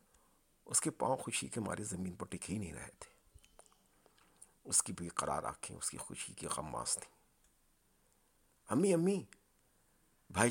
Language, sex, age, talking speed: Urdu, male, 50-69, 160 wpm